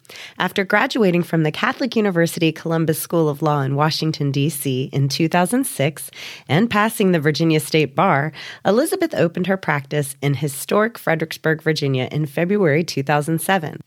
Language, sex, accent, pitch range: English, female, American, 145-180 Hz